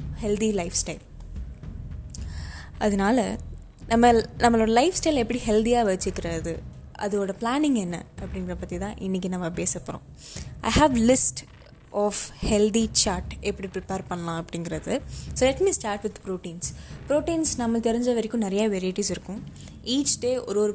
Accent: native